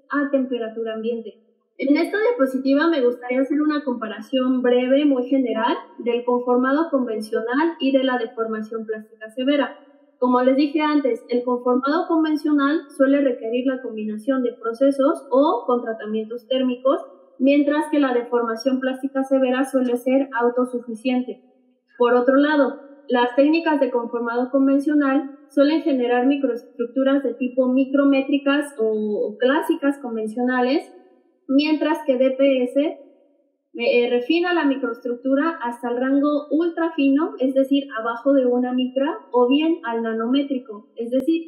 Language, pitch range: Spanish, 245-285 Hz